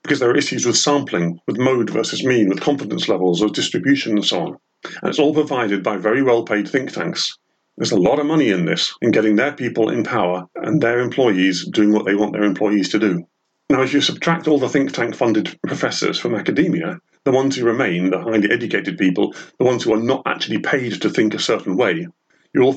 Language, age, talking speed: English, 50-69, 220 wpm